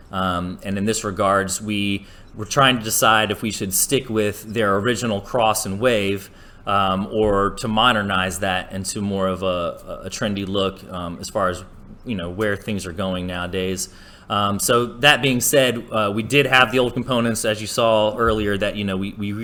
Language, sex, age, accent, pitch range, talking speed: English, male, 30-49, American, 95-115 Hz, 200 wpm